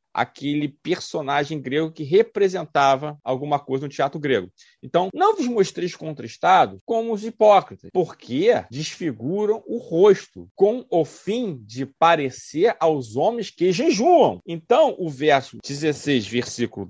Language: Portuguese